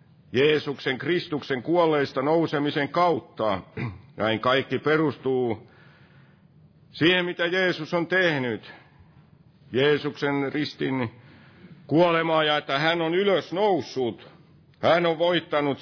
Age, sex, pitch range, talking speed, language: 50-69, male, 125-155 Hz, 95 wpm, Finnish